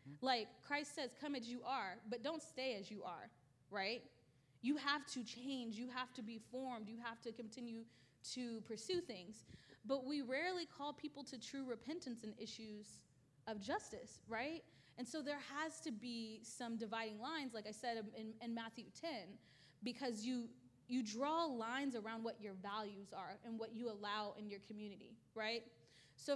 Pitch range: 220-260 Hz